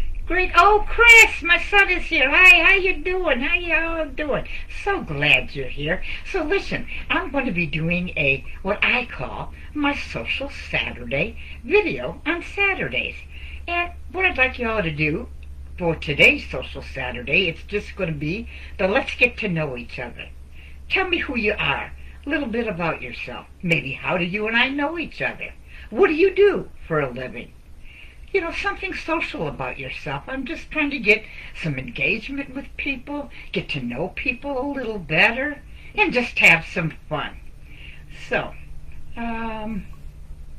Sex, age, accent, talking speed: female, 60-79, American, 165 wpm